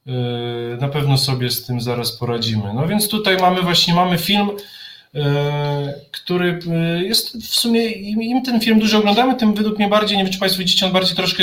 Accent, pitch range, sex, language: native, 135-165 Hz, male, Polish